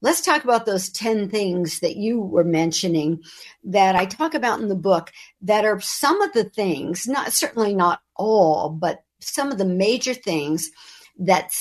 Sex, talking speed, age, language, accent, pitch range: female, 175 wpm, 60-79, English, American, 175-240 Hz